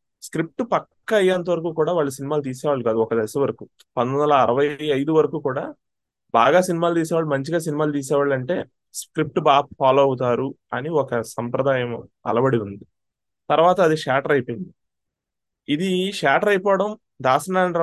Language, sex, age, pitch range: Telugu, male, 20-39, 130-180 Hz